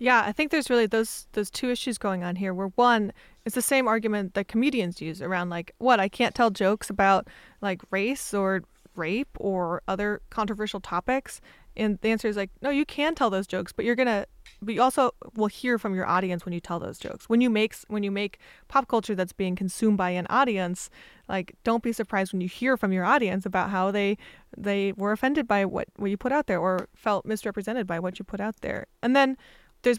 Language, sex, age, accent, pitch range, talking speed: English, female, 20-39, American, 190-235 Hz, 225 wpm